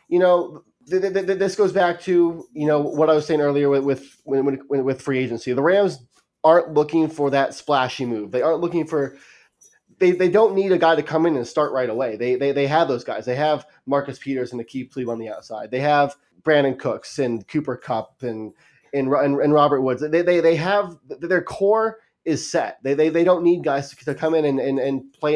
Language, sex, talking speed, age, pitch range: English, male, 235 wpm, 20-39, 135-165 Hz